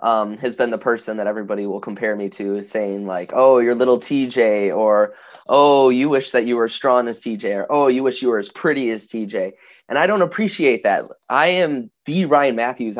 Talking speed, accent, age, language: 220 wpm, American, 20-39, English